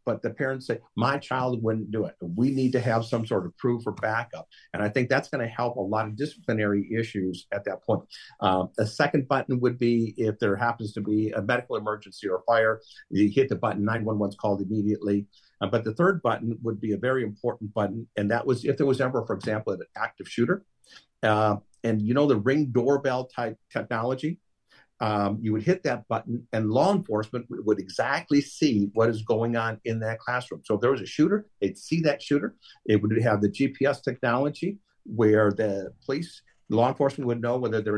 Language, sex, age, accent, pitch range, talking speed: English, male, 50-69, American, 105-135 Hz, 210 wpm